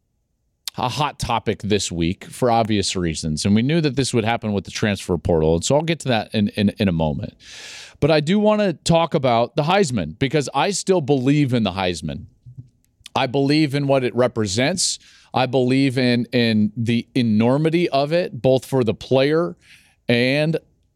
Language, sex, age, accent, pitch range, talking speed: English, male, 40-59, American, 110-150 Hz, 185 wpm